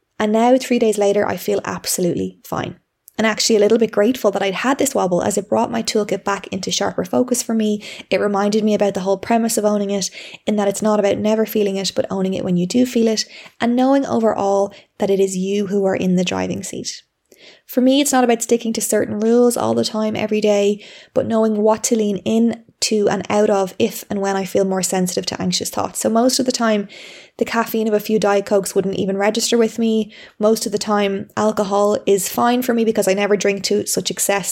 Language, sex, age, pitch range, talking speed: English, female, 20-39, 195-230 Hz, 240 wpm